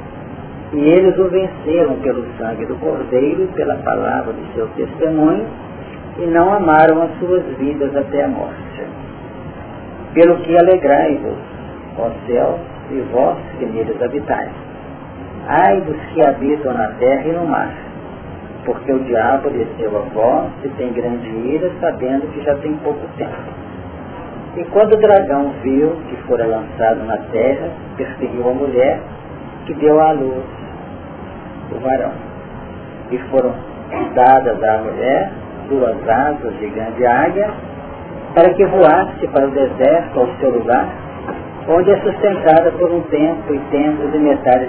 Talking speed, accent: 140 wpm, Brazilian